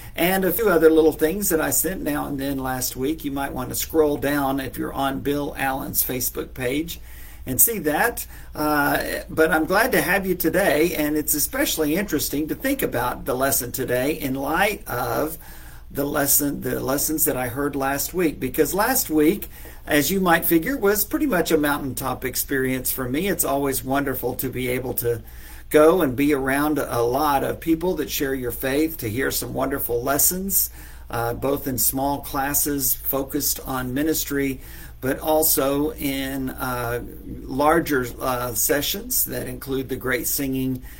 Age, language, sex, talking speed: 50-69, English, male, 175 wpm